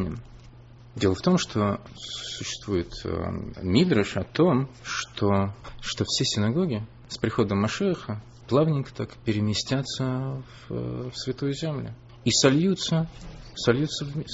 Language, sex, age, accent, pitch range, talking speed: Russian, male, 30-49, native, 110-145 Hz, 105 wpm